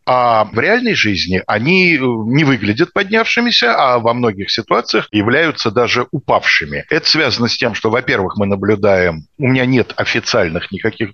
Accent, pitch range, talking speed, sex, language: native, 100-135 Hz, 150 wpm, male, Russian